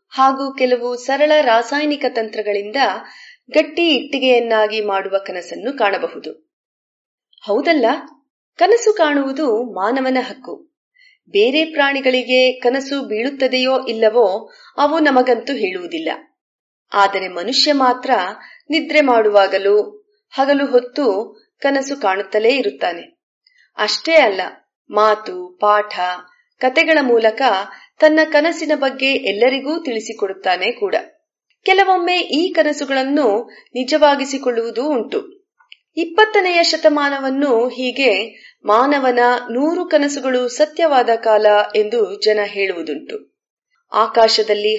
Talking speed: 85 wpm